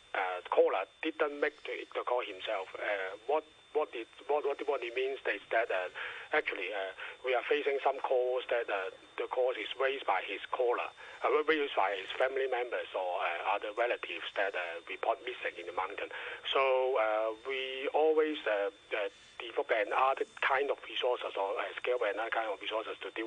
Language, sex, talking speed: English, male, 190 wpm